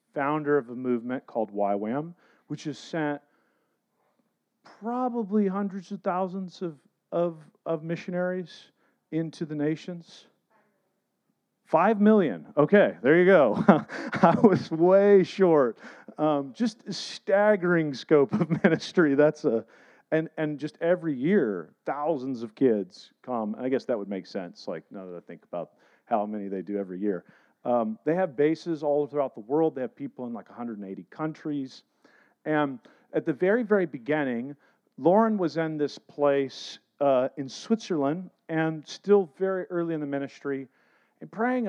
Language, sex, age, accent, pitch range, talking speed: English, male, 40-59, American, 140-190 Hz, 150 wpm